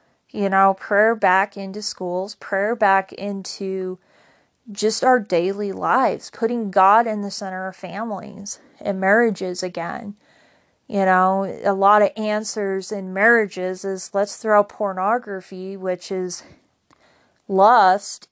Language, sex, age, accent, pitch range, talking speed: English, female, 30-49, American, 190-220 Hz, 125 wpm